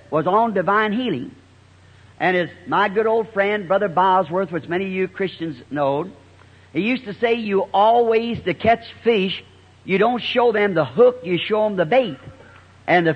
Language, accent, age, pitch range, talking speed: English, American, 50-69, 165-230 Hz, 180 wpm